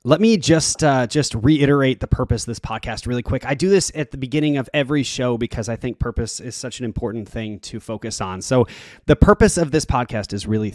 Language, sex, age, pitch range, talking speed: English, male, 20-39, 115-145 Hz, 235 wpm